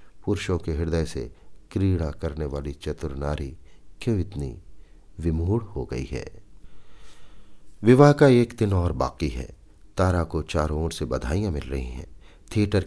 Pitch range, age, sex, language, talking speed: 75-105 Hz, 50-69, male, Hindi, 150 wpm